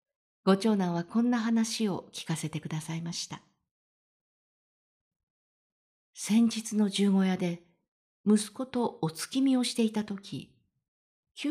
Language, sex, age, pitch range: Japanese, female, 50-69, 170-220 Hz